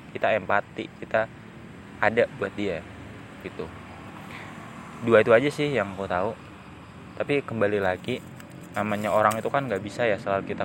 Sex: male